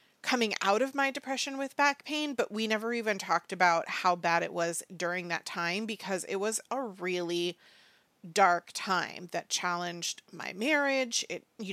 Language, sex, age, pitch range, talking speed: English, female, 30-49, 180-215 Hz, 175 wpm